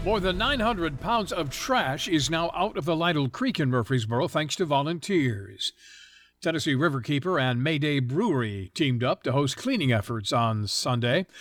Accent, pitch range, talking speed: American, 130-175 Hz, 165 wpm